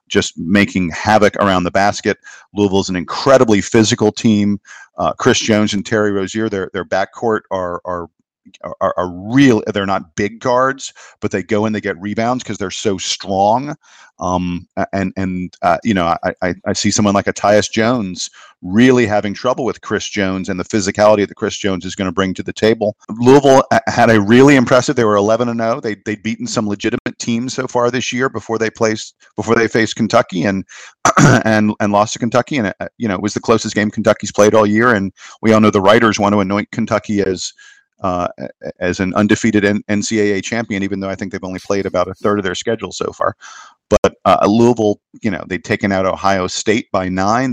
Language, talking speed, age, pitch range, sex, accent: English, 210 wpm, 50-69, 95-110 Hz, male, American